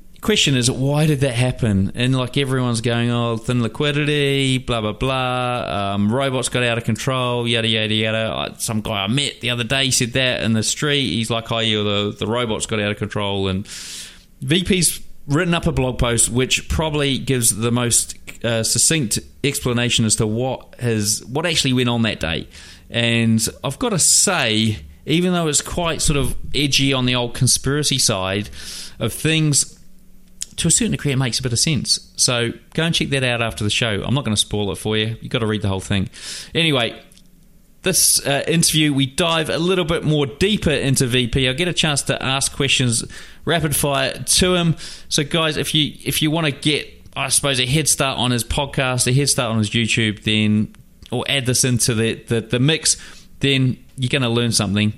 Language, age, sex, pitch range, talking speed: English, 30-49, male, 110-140 Hz, 205 wpm